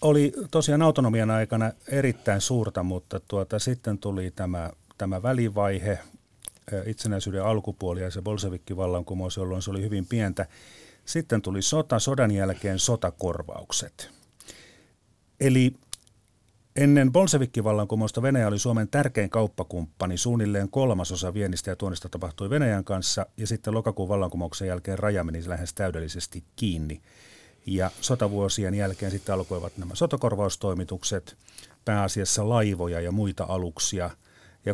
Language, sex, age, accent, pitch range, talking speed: Finnish, male, 40-59, native, 95-115 Hz, 115 wpm